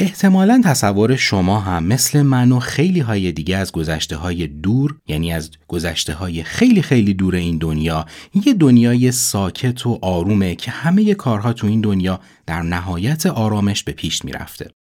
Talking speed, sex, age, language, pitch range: 165 wpm, male, 30-49, Persian, 85-130 Hz